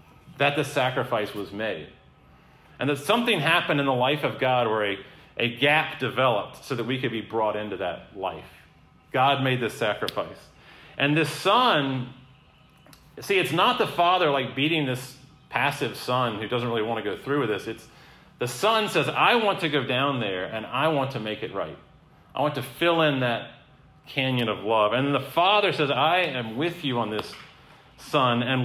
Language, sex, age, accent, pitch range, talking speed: English, male, 40-59, American, 125-155 Hz, 195 wpm